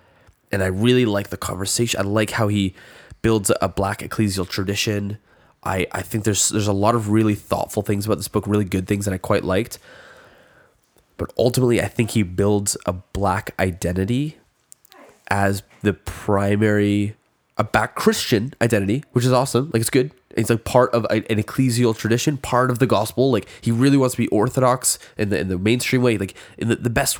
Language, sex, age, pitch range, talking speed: English, male, 20-39, 95-115 Hz, 190 wpm